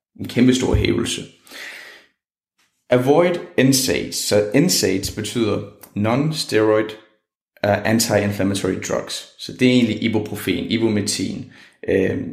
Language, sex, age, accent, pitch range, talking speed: Danish, male, 30-49, native, 100-120 Hz, 90 wpm